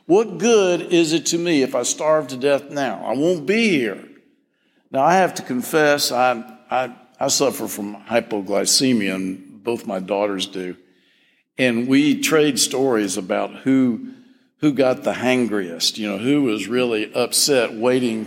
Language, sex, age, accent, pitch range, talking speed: English, male, 50-69, American, 120-190 Hz, 160 wpm